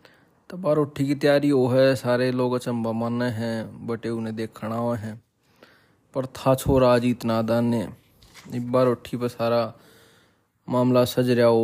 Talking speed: 130 wpm